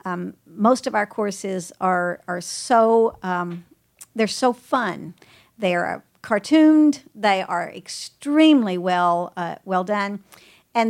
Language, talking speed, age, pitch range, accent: English, 125 wpm, 50-69, 185-235 Hz, American